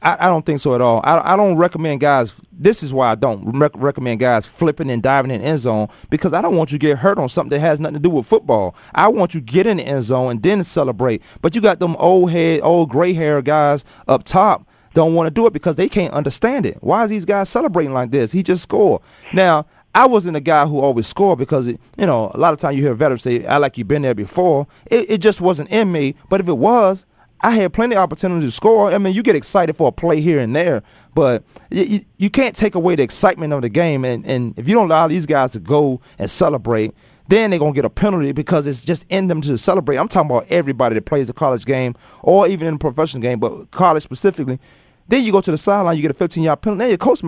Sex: male